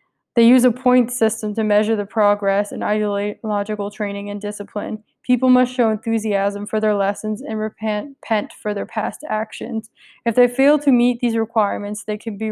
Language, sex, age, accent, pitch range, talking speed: English, female, 20-39, American, 205-230 Hz, 175 wpm